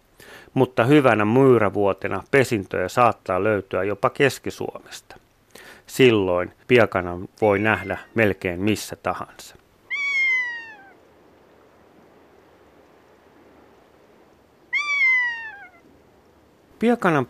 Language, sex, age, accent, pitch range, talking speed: Finnish, male, 30-49, native, 95-130 Hz, 55 wpm